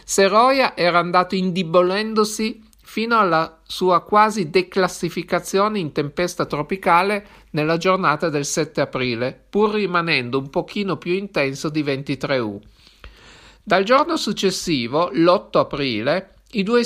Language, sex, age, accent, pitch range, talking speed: Italian, male, 50-69, native, 160-210 Hz, 115 wpm